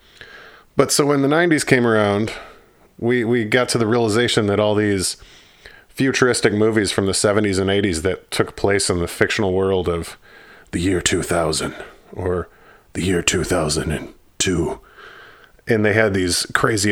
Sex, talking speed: male, 155 wpm